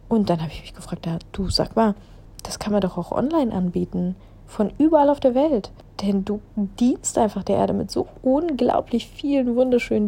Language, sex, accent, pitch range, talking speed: German, female, German, 185-250 Hz, 190 wpm